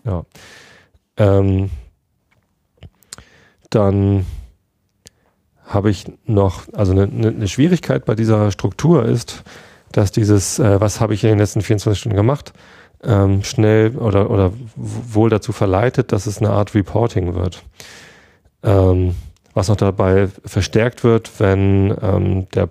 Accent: German